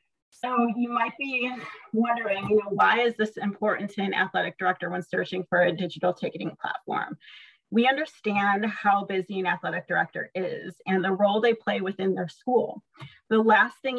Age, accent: 30-49, American